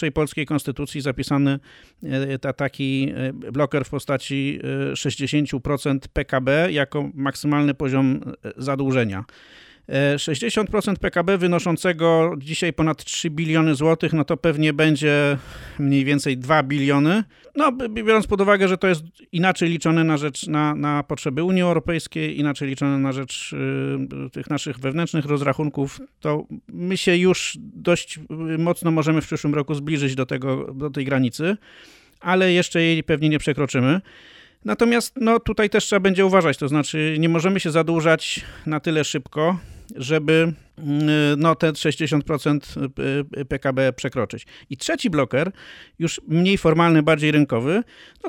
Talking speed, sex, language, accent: 135 wpm, male, Polish, native